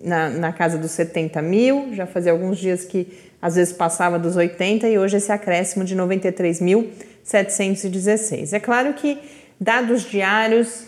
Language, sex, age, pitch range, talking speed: Portuguese, female, 30-49, 175-220 Hz, 150 wpm